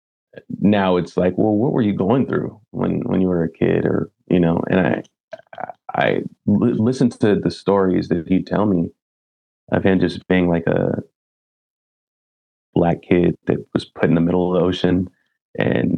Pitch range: 90-110 Hz